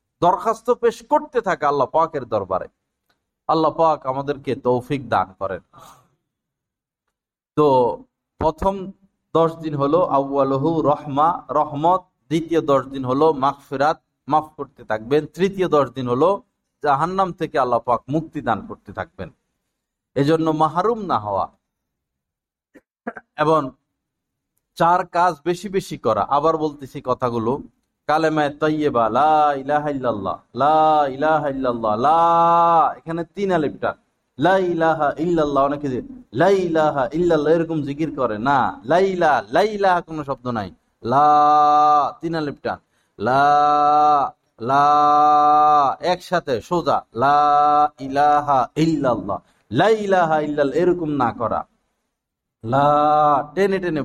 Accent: native